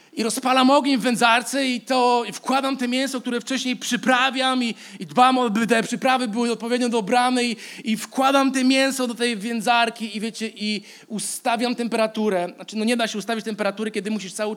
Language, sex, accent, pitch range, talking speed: Polish, male, native, 230-275 Hz, 190 wpm